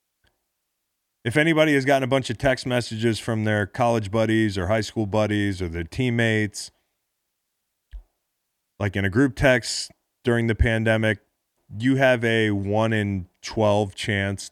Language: English